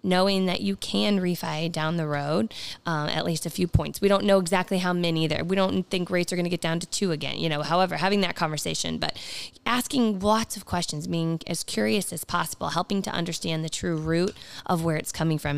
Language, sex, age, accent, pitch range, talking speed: English, female, 20-39, American, 170-210 Hz, 230 wpm